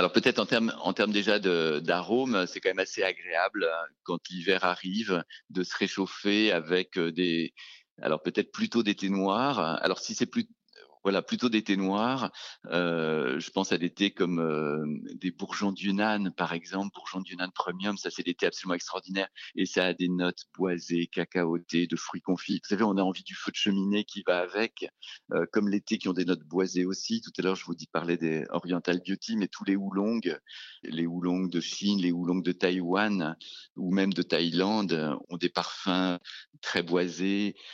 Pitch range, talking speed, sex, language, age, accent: 85-100 Hz, 195 wpm, male, French, 40-59, French